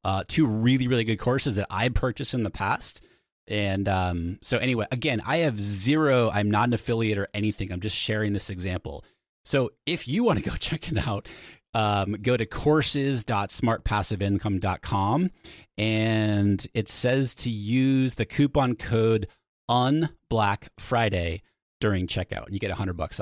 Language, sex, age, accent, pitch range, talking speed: English, male, 30-49, American, 100-135 Hz, 160 wpm